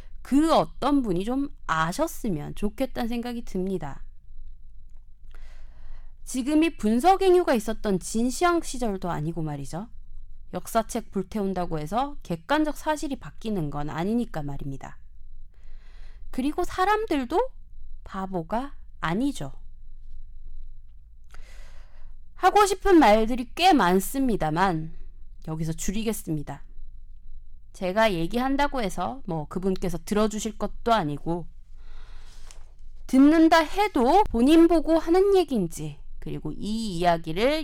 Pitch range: 170-280 Hz